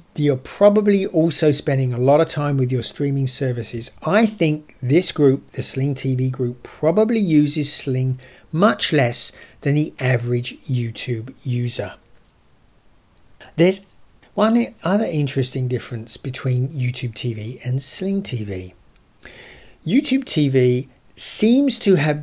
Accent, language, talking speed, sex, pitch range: British, English, 125 wpm, male, 125-155 Hz